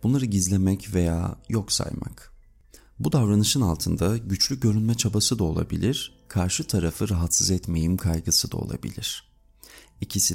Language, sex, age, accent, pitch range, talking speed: Turkish, male, 40-59, native, 90-115 Hz, 120 wpm